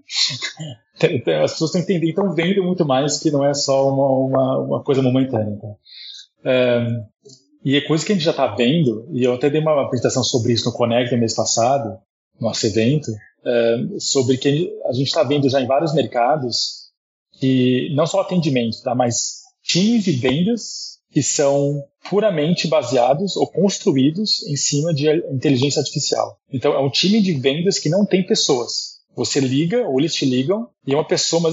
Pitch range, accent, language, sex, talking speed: 120-170 Hz, Brazilian, Portuguese, male, 185 wpm